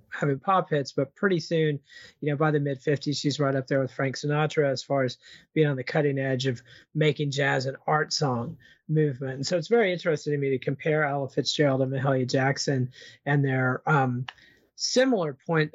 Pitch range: 140-165 Hz